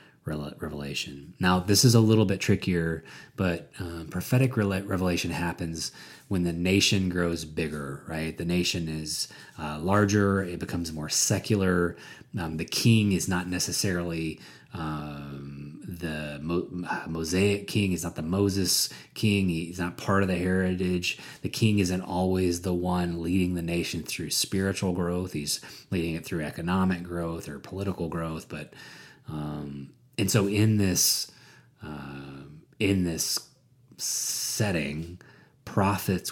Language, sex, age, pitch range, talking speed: English, male, 30-49, 80-95 Hz, 135 wpm